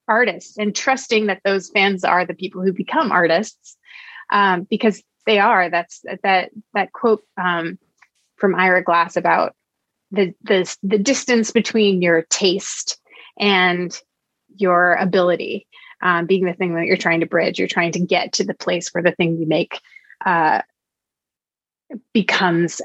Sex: female